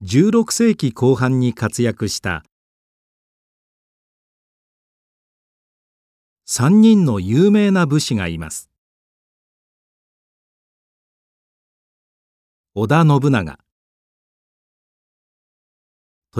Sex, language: male, Japanese